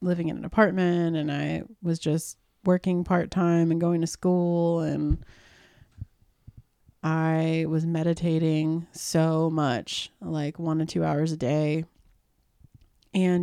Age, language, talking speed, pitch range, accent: 30-49, English, 130 wpm, 160-175 Hz, American